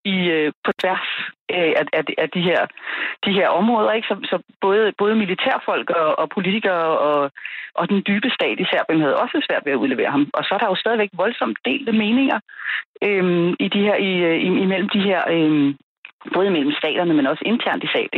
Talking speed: 180 wpm